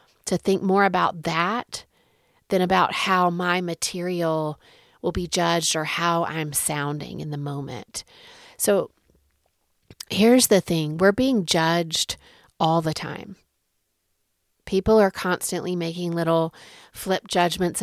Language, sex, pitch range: English, female, 160-190 Hz